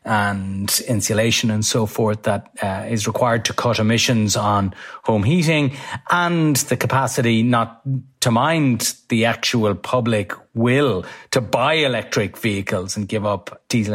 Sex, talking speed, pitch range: male, 140 wpm, 100-125 Hz